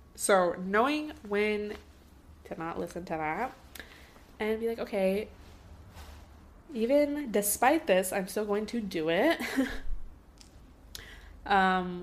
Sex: female